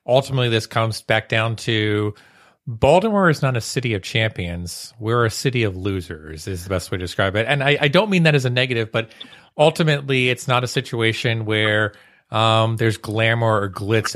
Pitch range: 105-130 Hz